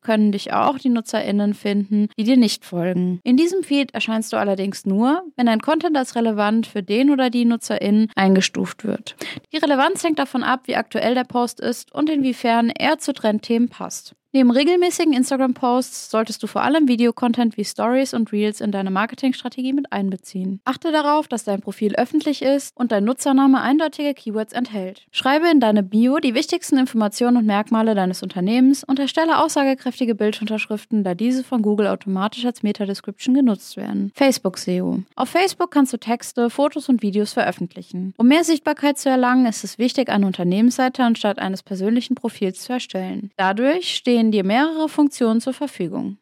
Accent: German